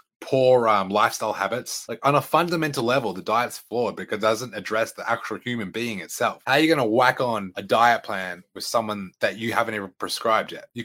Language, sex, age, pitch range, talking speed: English, male, 20-39, 100-140 Hz, 220 wpm